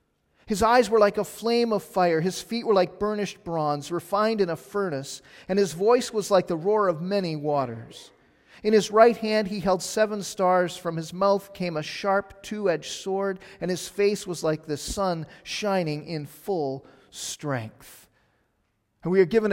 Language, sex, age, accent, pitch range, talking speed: English, male, 40-59, American, 160-210 Hz, 180 wpm